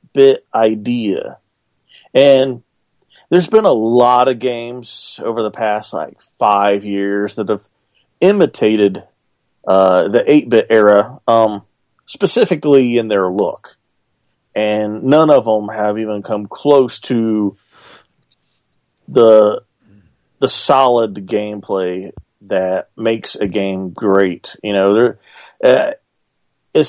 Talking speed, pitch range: 110 wpm, 105-130 Hz